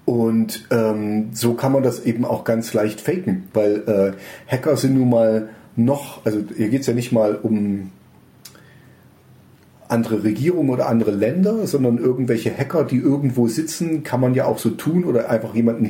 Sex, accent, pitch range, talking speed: male, German, 110-140 Hz, 175 wpm